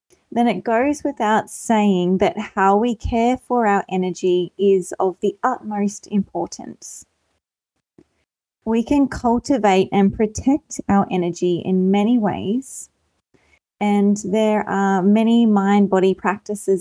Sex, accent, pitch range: female, Australian, 185-220 Hz